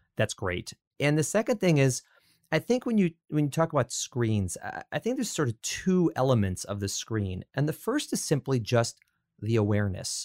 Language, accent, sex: English, American, male